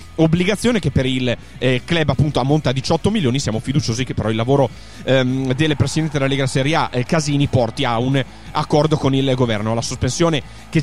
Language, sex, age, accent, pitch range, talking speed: Italian, male, 30-49, native, 125-155 Hz, 185 wpm